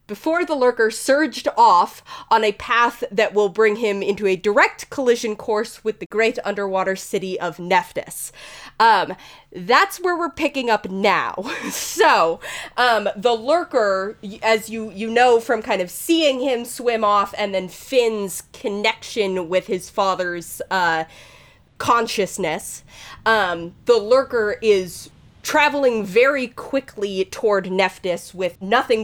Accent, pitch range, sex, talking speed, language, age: American, 190-245 Hz, female, 135 wpm, English, 20-39